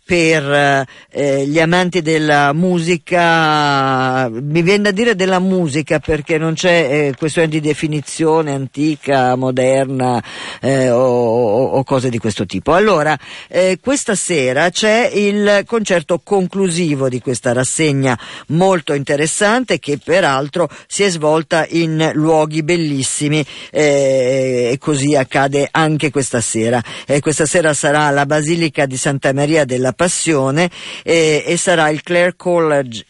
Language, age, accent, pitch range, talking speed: Italian, 50-69, native, 135-170 Hz, 130 wpm